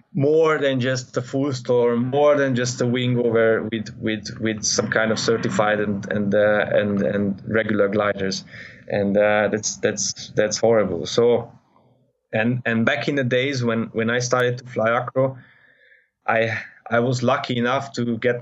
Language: English